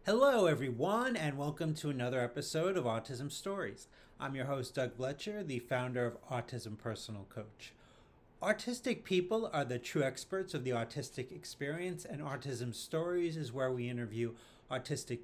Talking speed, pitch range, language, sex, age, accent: 155 wpm, 120-160 Hz, English, male, 30-49, American